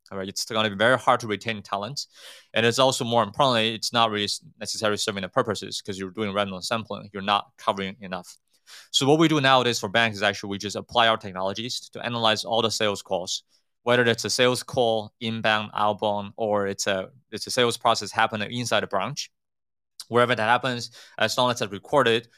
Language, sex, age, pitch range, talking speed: English, male, 20-39, 100-120 Hz, 210 wpm